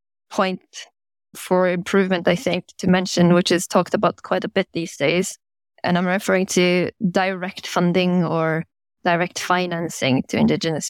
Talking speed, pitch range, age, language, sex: 150 wpm, 175-200 Hz, 20-39, English, female